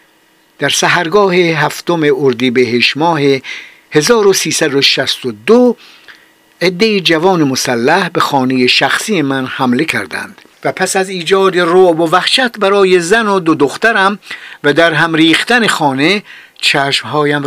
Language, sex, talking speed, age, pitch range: Persian, male, 115 wpm, 50-69, 140-195 Hz